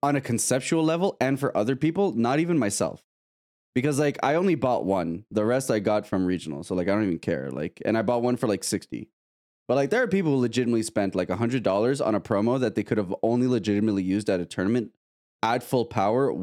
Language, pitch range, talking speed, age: English, 100-135 Hz, 235 wpm, 20-39